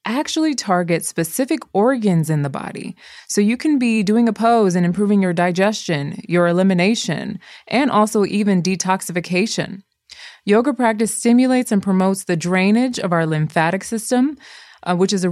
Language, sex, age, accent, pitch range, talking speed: English, female, 20-39, American, 170-215 Hz, 155 wpm